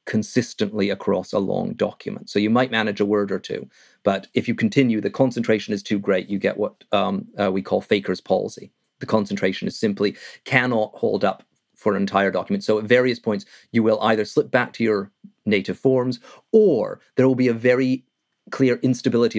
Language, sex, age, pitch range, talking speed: English, male, 40-59, 105-125 Hz, 195 wpm